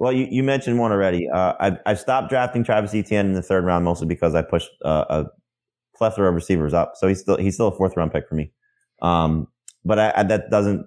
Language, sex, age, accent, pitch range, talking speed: English, male, 20-39, American, 80-100 Hz, 235 wpm